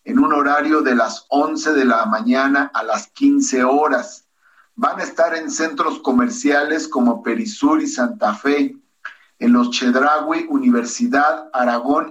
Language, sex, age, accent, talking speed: Spanish, male, 50-69, Mexican, 145 wpm